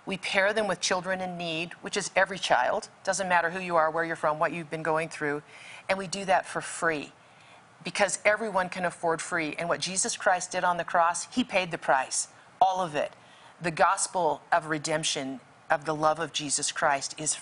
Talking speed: 210 wpm